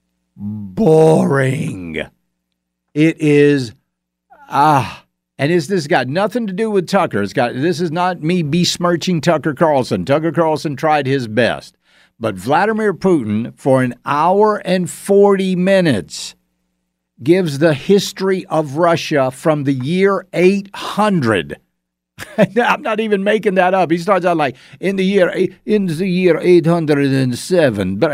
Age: 50-69